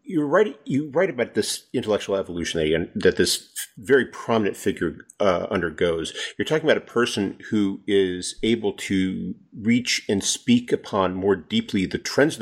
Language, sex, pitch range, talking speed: English, male, 95-150 Hz, 160 wpm